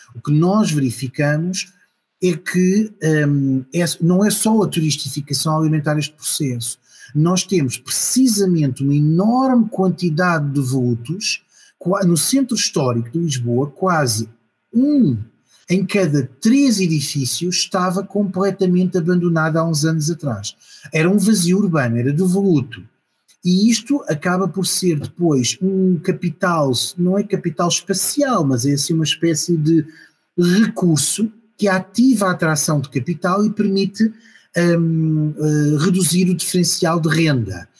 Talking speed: 125 wpm